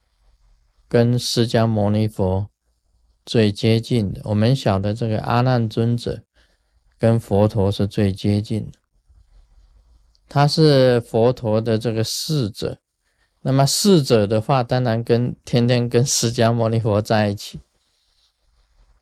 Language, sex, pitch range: Chinese, male, 85-130 Hz